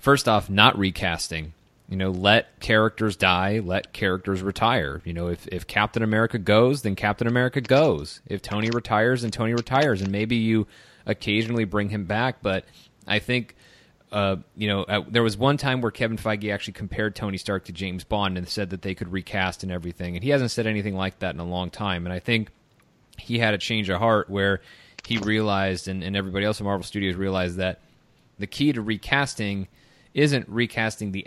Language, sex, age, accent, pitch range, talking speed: English, male, 30-49, American, 95-115 Hz, 200 wpm